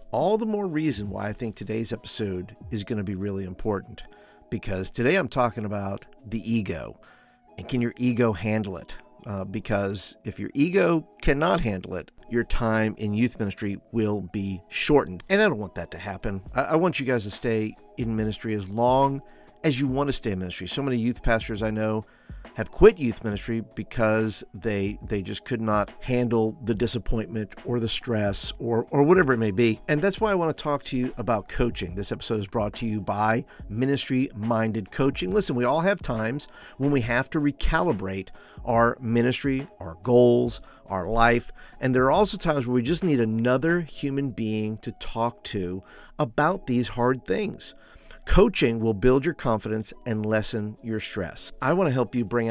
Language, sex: English, male